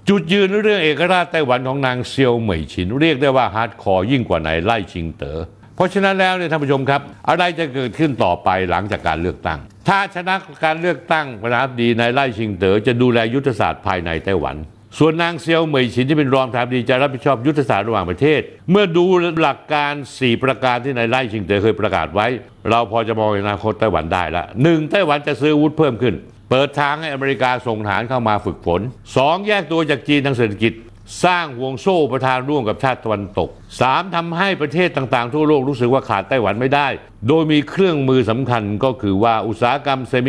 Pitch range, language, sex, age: 105-150 Hz, Thai, male, 60-79